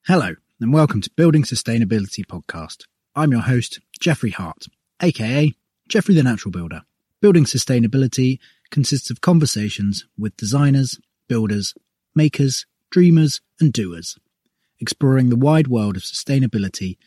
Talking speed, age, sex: 125 wpm, 30-49, male